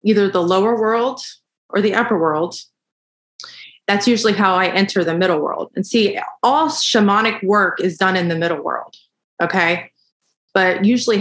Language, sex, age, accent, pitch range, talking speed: English, female, 30-49, American, 175-220 Hz, 160 wpm